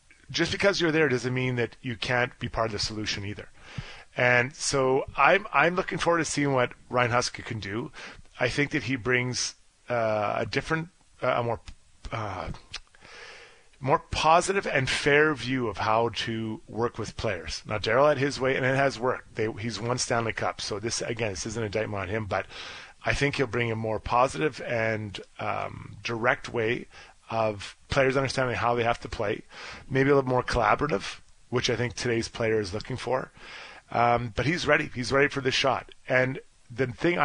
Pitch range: 115-145 Hz